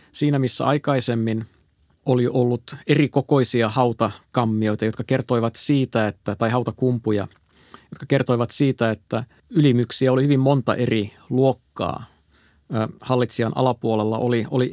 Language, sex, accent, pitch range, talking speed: Finnish, male, native, 110-140 Hz, 110 wpm